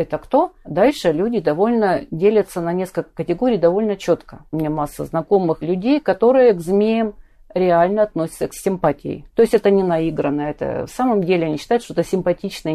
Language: Russian